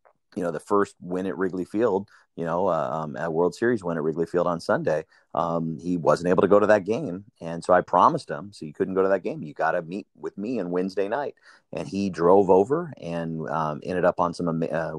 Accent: American